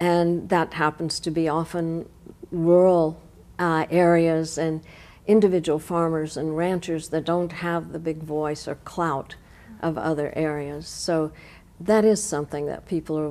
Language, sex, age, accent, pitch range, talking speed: English, female, 60-79, American, 150-170 Hz, 145 wpm